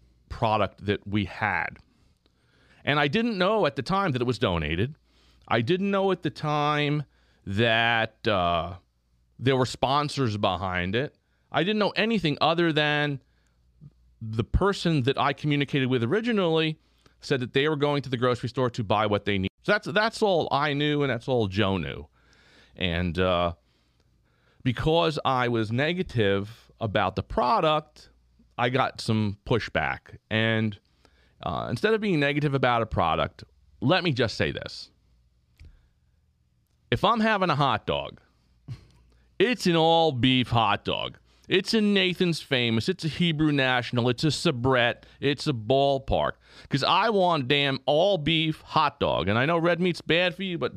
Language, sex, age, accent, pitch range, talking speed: English, male, 40-59, American, 100-155 Hz, 160 wpm